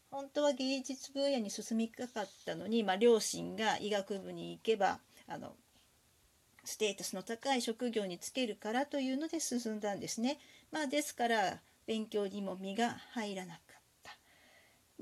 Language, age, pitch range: Japanese, 40-59, 215-275 Hz